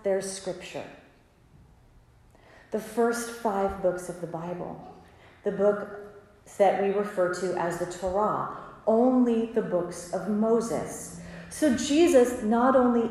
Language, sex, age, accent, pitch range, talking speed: English, female, 30-49, American, 195-250 Hz, 125 wpm